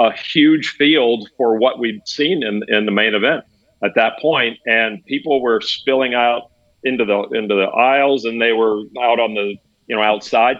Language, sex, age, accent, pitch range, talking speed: English, male, 50-69, American, 105-130 Hz, 195 wpm